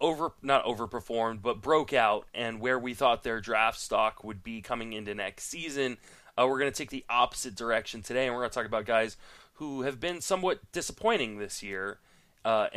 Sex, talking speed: male, 200 wpm